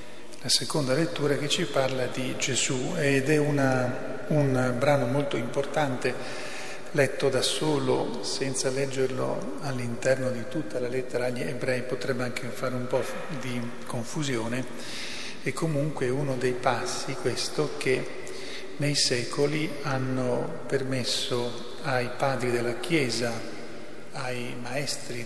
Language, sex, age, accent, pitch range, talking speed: Italian, male, 40-59, native, 125-140 Hz, 120 wpm